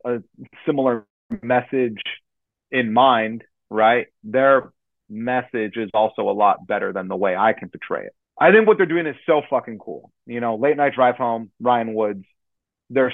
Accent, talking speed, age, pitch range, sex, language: American, 175 wpm, 30-49, 110-125 Hz, male, English